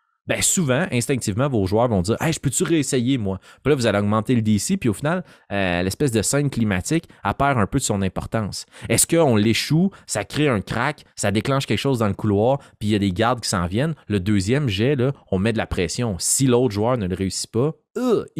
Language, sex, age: French, male, 30-49